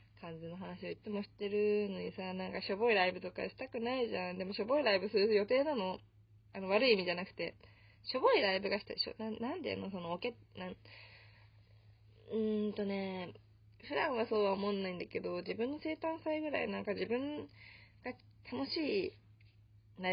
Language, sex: Japanese, female